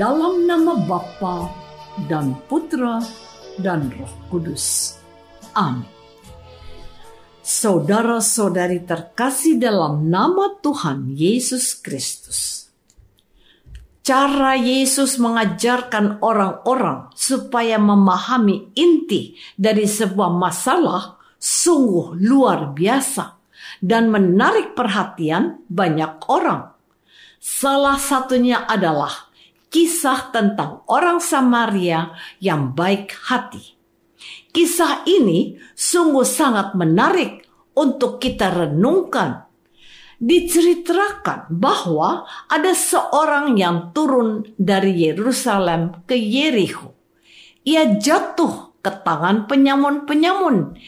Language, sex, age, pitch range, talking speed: Indonesian, female, 50-69, 185-285 Hz, 80 wpm